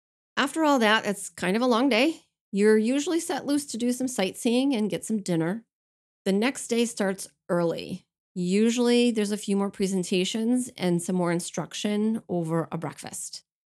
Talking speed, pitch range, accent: 170 wpm, 175-220 Hz, American